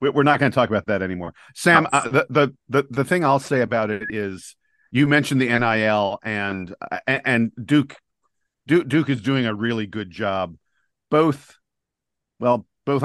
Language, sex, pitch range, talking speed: English, male, 105-130 Hz, 160 wpm